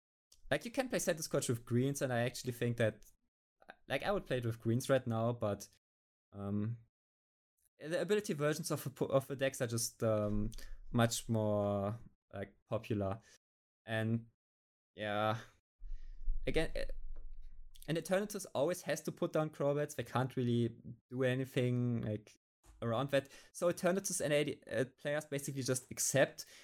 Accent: German